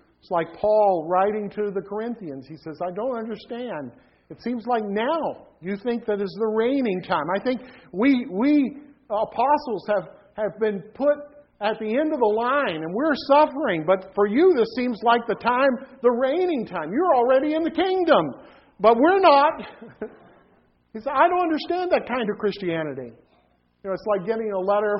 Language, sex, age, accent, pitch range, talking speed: English, male, 50-69, American, 165-225 Hz, 180 wpm